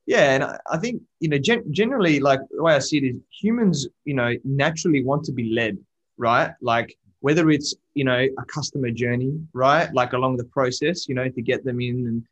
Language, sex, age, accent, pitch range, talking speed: English, male, 20-39, Australian, 115-135 Hz, 215 wpm